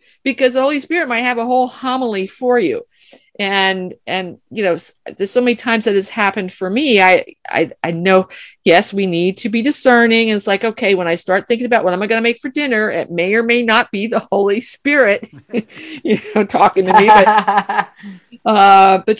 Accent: American